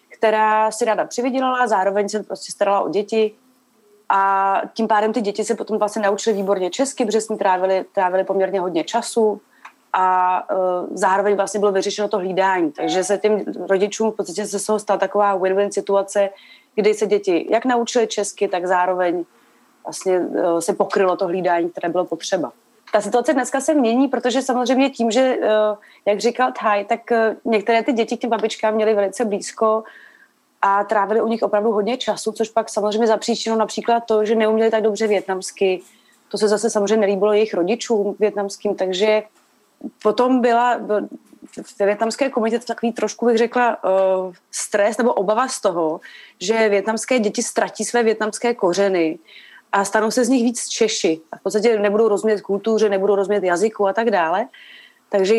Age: 30-49